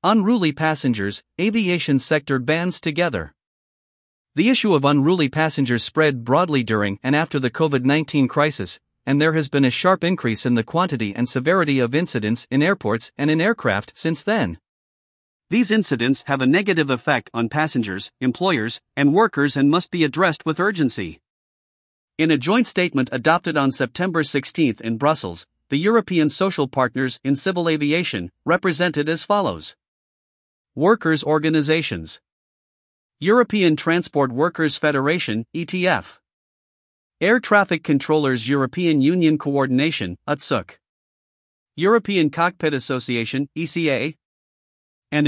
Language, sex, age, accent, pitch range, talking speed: English, male, 50-69, American, 130-170 Hz, 125 wpm